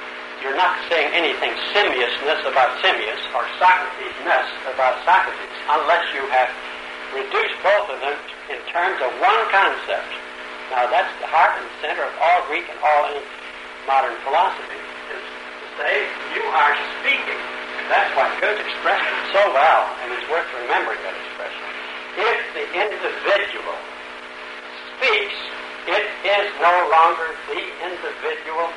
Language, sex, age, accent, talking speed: English, male, 60-79, American, 140 wpm